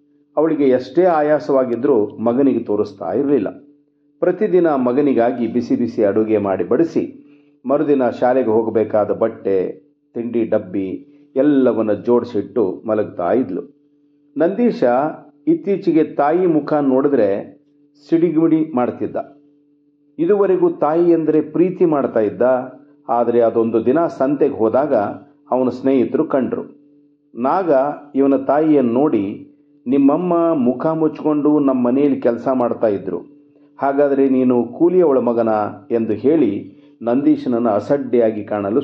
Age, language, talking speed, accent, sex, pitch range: 50-69, Kannada, 100 wpm, native, male, 120-145 Hz